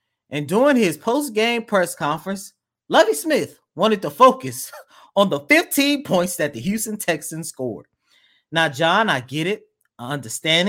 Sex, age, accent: male, 30-49, American